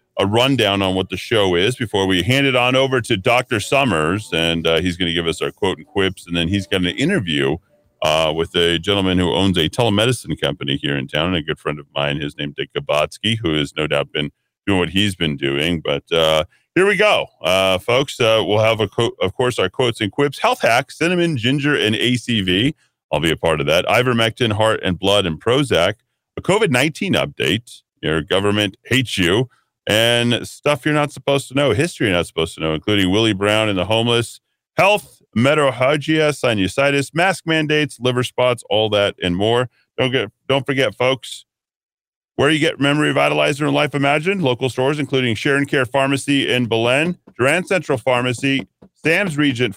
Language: English